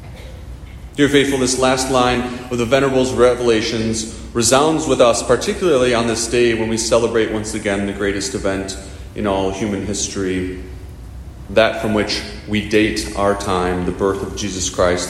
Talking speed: 160 wpm